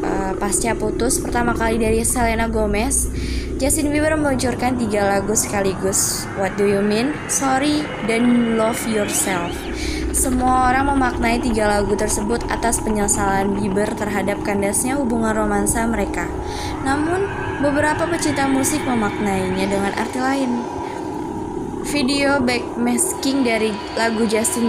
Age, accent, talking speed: 20-39, native, 120 wpm